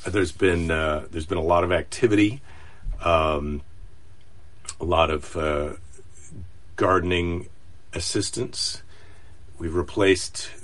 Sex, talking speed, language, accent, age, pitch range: male, 100 wpm, English, American, 50-69, 85-130 Hz